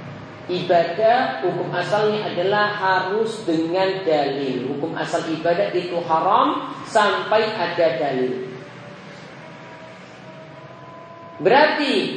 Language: Indonesian